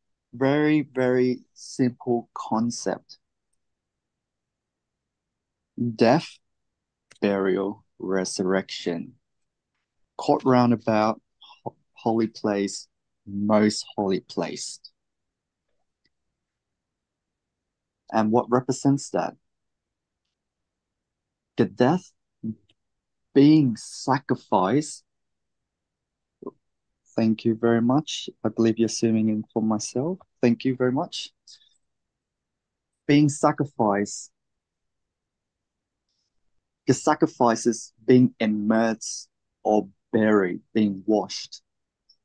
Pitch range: 105-135 Hz